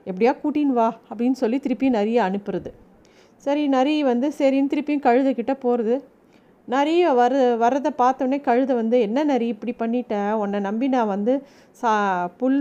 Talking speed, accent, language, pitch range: 145 wpm, native, Tamil, 230-280 Hz